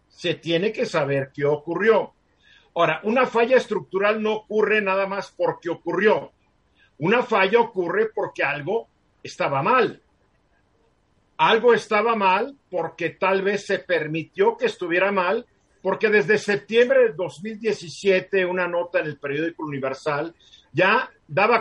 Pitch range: 175-230 Hz